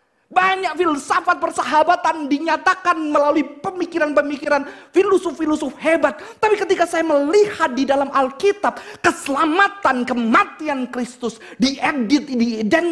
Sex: male